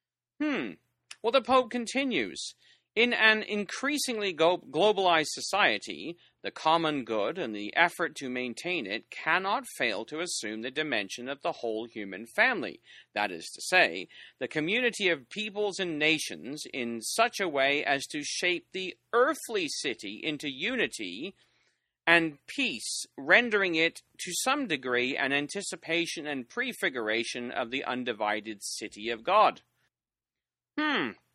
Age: 40-59